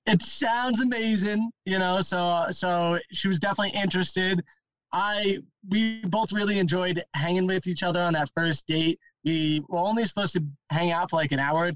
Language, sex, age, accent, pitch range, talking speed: English, male, 20-39, American, 155-185 Hz, 185 wpm